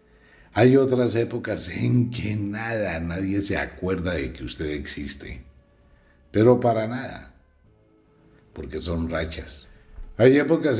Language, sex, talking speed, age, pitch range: Spanish, male, 115 wpm, 60-79, 80-110 Hz